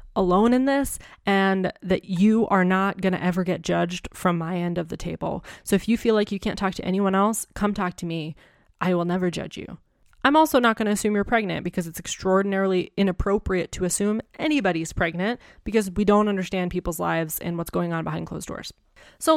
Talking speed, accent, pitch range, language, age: 215 wpm, American, 175-200 Hz, English, 20-39